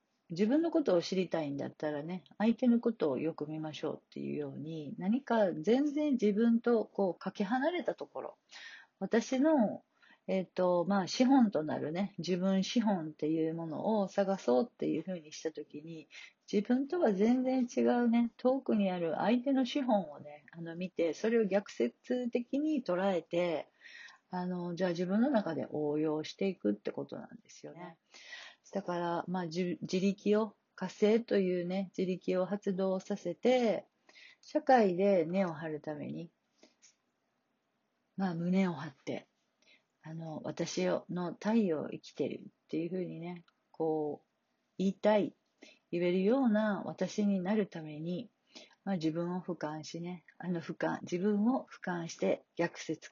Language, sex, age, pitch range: Japanese, female, 50-69, 170-225 Hz